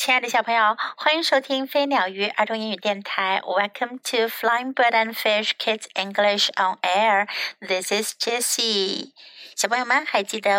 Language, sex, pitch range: Chinese, female, 215-300 Hz